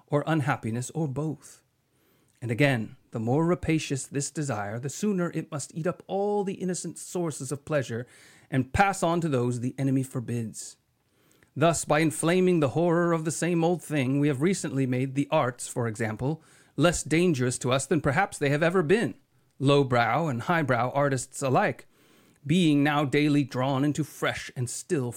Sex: male